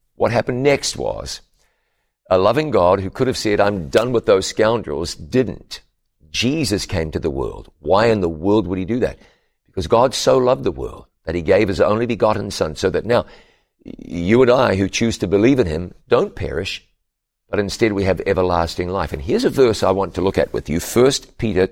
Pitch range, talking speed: 90-120 Hz, 210 wpm